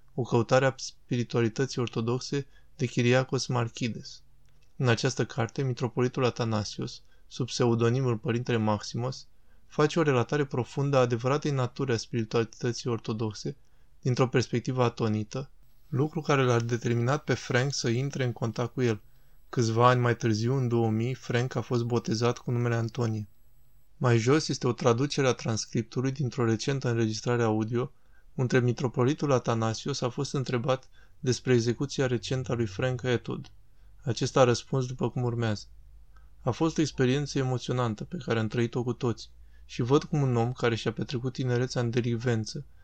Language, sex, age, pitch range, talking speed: Romanian, male, 20-39, 115-130 Hz, 150 wpm